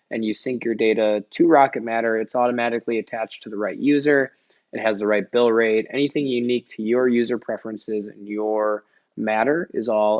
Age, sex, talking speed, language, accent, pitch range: 20-39, male, 190 wpm, English, American, 110-135 Hz